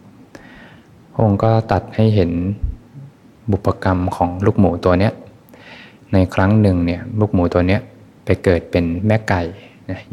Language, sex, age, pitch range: Thai, male, 20-39, 90-105 Hz